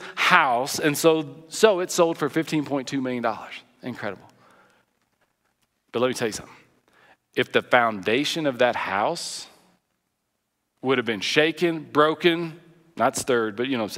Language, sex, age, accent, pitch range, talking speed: English, male, 40-59, American, 120-170 Hz, 150 wpm